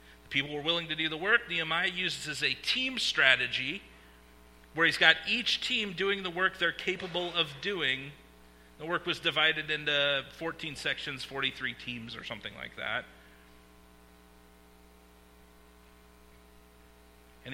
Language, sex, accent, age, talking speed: English, male, American, 40-59, 135 wpm